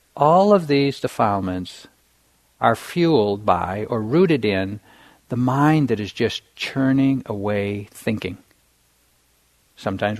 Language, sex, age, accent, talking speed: English, male, 60-79, American, 110 wpm